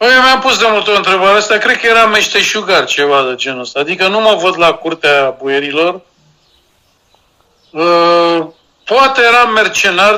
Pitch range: 150-205 Hz